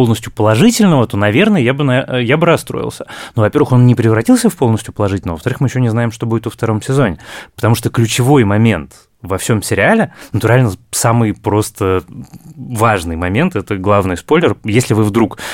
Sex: male